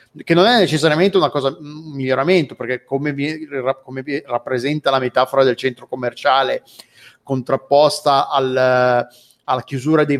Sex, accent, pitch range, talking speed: male, native, 130-150 Hz, 125 wpm